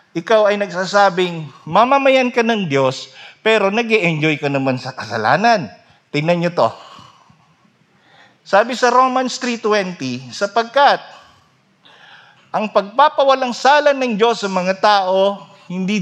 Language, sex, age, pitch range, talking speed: Filipino, male, 50-69, 150-225 Hz, 110 wpm